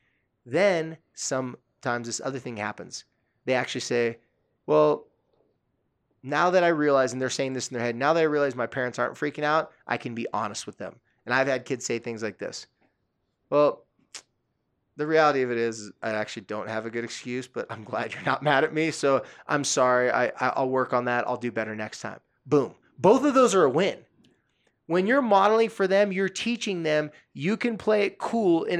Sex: male